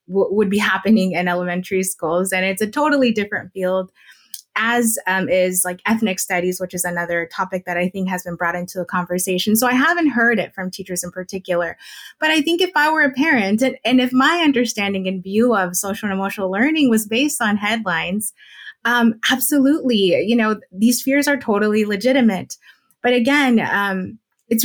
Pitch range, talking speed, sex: 185-240 Hz, 185 wpm, female